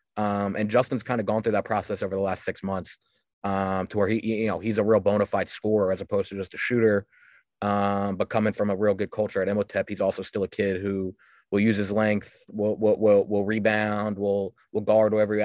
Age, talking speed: 20-39, 240 wpm